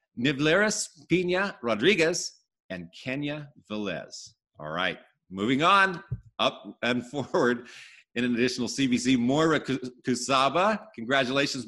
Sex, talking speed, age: male, 105 wpm, 50-69